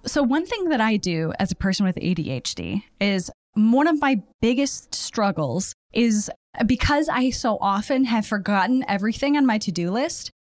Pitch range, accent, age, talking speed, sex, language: 195-260 Hz, American, 10-29, 165 wpm, female, English